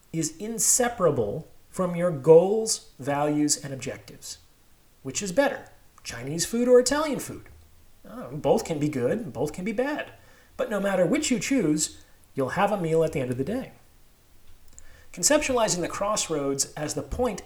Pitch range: 135-210 Hz